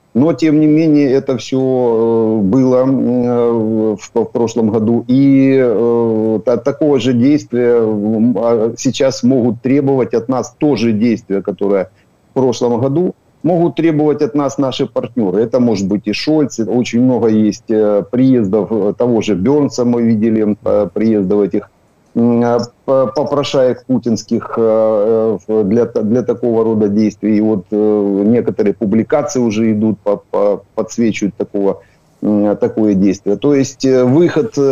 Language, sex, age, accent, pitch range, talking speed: Ukrainian, male, 50-69, native, 110-135 Hz, 120 wpm